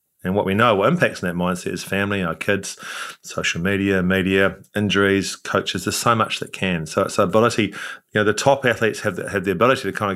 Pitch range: 90-115 Hz